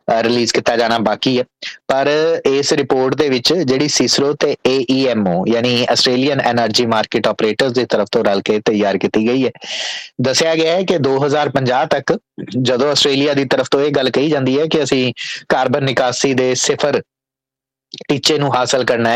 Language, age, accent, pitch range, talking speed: English, 20-39, Indian, 120-145 Hz, 145 wpm